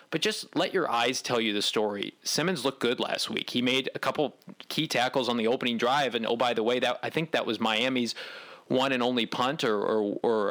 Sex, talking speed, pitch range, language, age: male, 240 wpm, 110-125 Hz, English, 30-49